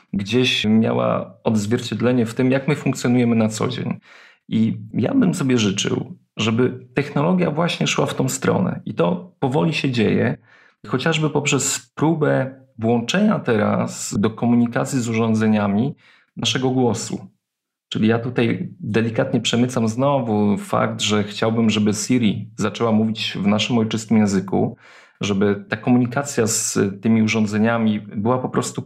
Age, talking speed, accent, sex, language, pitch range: 30-49, 135 wpm, native, male, Polish, 110-130 Hz